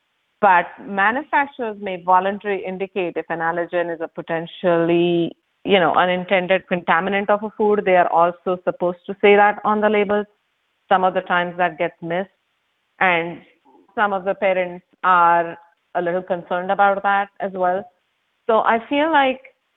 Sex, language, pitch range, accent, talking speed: female, English, 175-210 Hz, Indian, 160 wpm